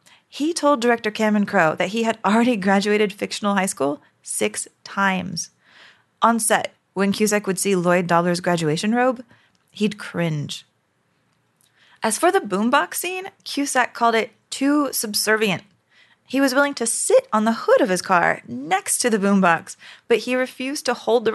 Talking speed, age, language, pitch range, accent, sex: 165 wpm, 20-39, English, 190-255 Hz, American, female